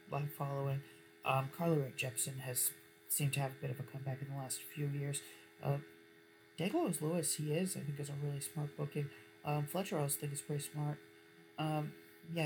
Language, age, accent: English, 40-59, American